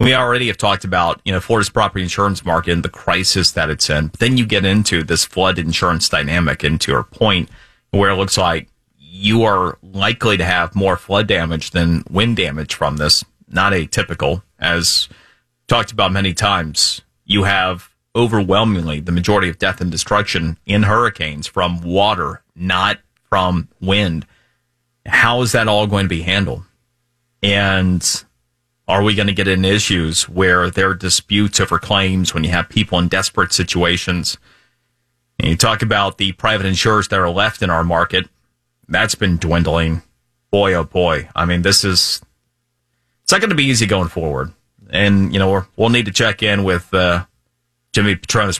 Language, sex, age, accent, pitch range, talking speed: English, male, 30-49, American, 85-105 Hz, 175 wpm